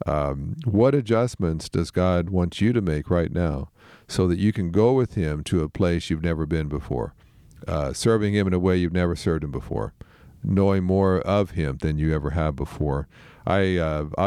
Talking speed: 200 wpm